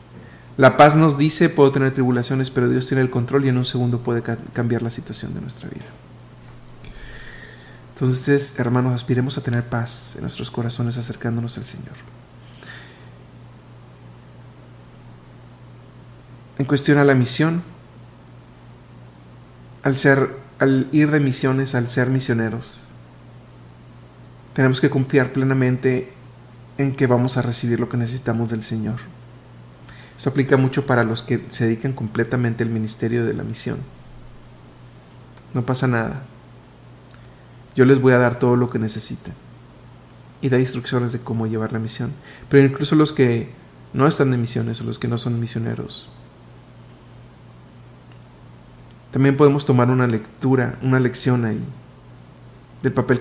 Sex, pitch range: male, 115-130 Hz